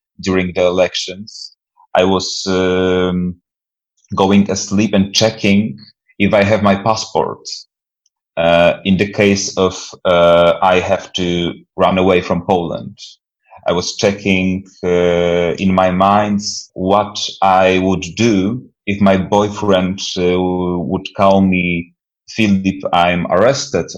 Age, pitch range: 30-49, 90-100 Hz